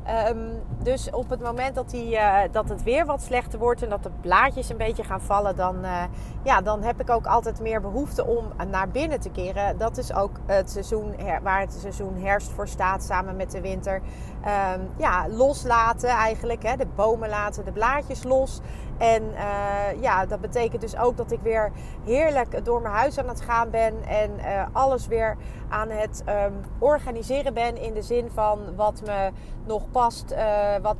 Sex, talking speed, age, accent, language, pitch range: female, 175 wpm, 30-49, Dutch, Dutch, 195-235 Hz